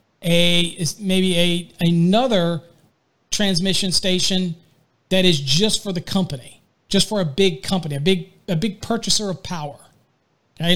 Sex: male